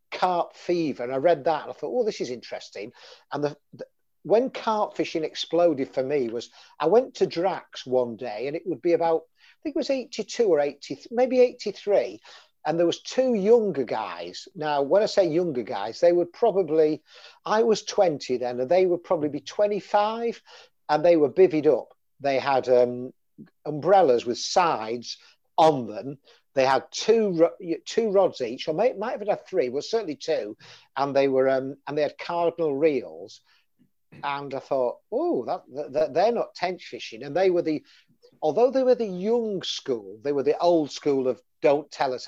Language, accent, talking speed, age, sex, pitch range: English, British, 190 wpm, 50-69, male, 140-210 Hz